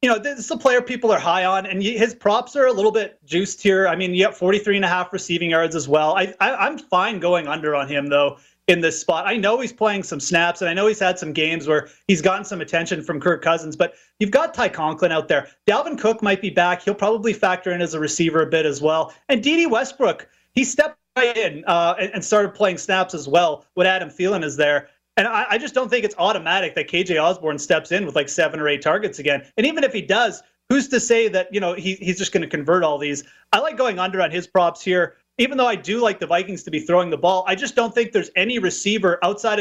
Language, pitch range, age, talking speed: English, 165-215 Hz, 30-49, 265 wpm